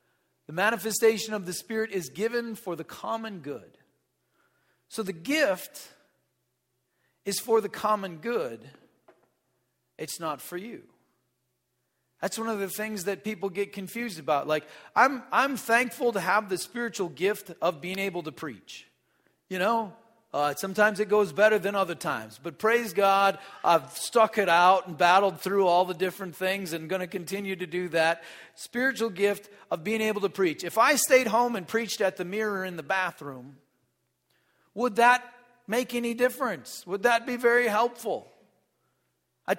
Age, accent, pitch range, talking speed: 40-59, American, 185-235 Hz, 165 wpm